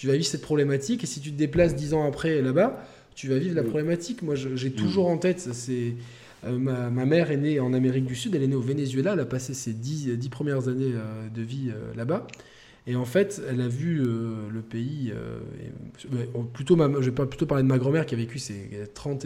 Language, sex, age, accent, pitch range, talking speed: French, male, 20-39, French, 110-145 Hz, 215 wpm